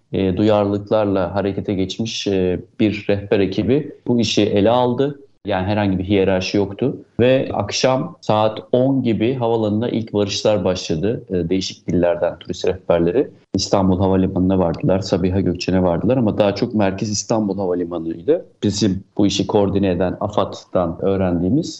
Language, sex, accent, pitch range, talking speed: Turkish, male, native, 95-115 Hz, 140 wpm